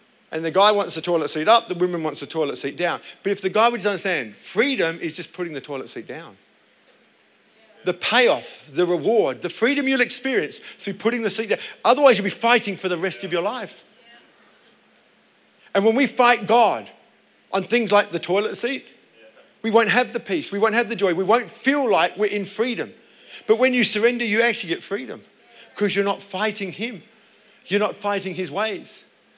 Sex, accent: male, British